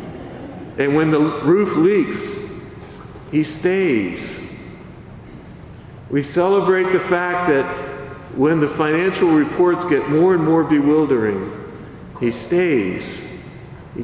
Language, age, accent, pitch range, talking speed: English, 50-69, American, 140-195 Hz, 105 wpm